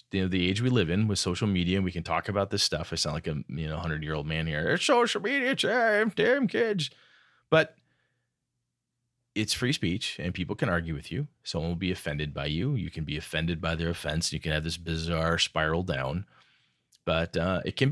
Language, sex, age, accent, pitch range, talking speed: English, male, 30-49, American, 80-100 Hz, 215 wpm